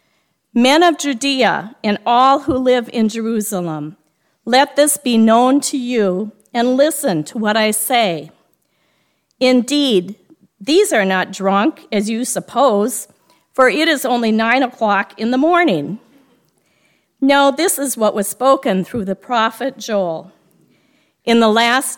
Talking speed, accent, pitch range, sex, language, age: 140 wpm, American, 205-255 Hz, female, English, 50-69